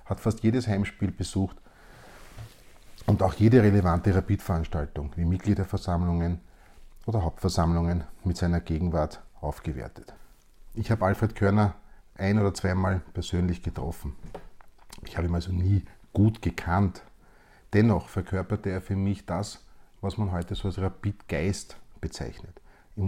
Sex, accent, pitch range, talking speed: male, Austrian, 85-105 Hz, 125 wpm